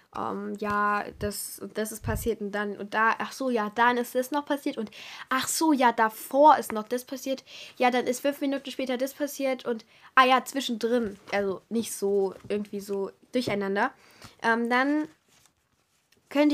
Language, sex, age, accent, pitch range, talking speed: German, female, 10-29, German, 205-255 Hz, 180 wpm